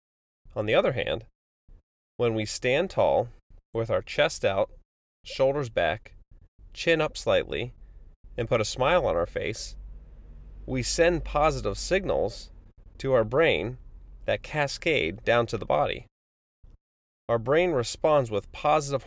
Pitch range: 85-135 Hz